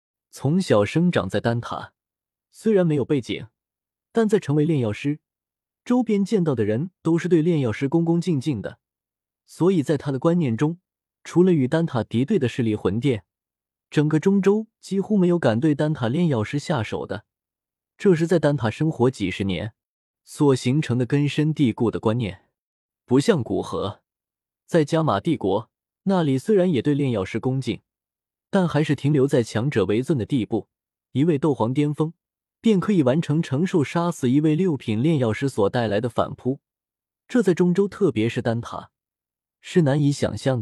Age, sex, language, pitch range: 20-39, male, Chinese, 115-170 Hz